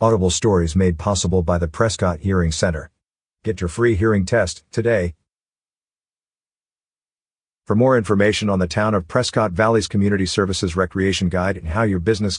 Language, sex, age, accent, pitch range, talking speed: English, male, 50-69, American, 90-120 Hz, 155 wpm